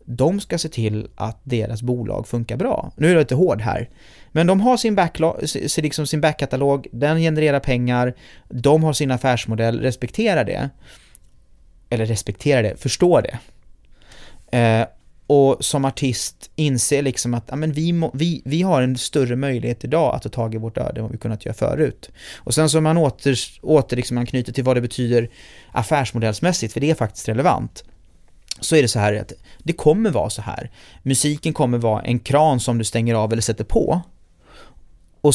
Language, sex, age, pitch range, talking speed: Swedish, male, 30-49, 115-150 Hz, 180 wpm